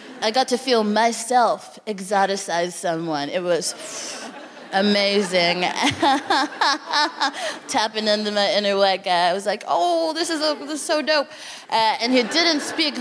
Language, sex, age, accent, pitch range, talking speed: English, female, 20-39, American, 215-300 Hz, 150 wpm